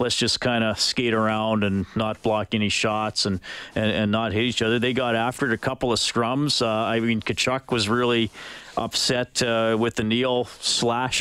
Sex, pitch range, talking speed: male, 110-135 Hz, 200 wpm